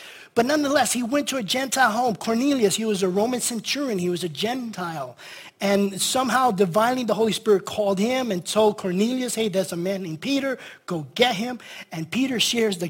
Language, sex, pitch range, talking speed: English, male, 185-240 Hz, 195 wpm